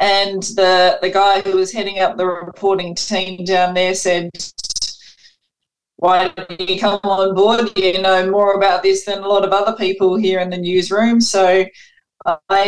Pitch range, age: 185-215 Hz, 20-39